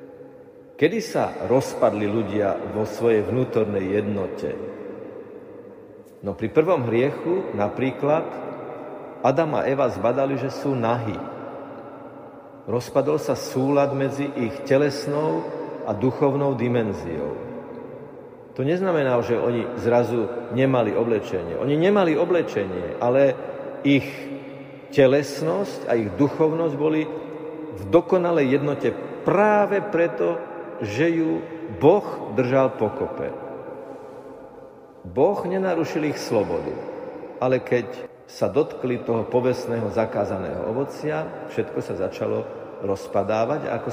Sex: male